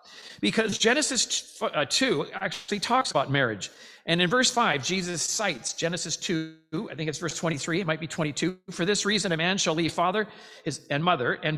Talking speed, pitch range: 180 wpm, 140-190 Hz